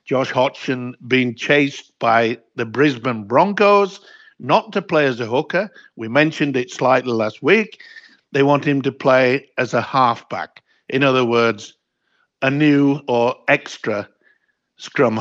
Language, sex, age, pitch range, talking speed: English, male, 60-79, 125-170 Hz, 140 wpm